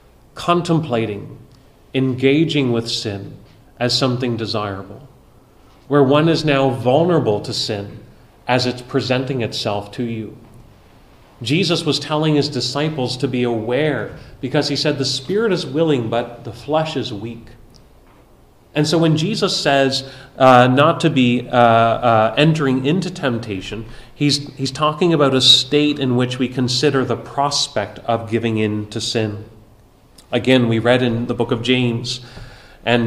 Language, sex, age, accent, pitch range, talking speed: English, male, 30-49, American, 115-140 Hz, 145 wpm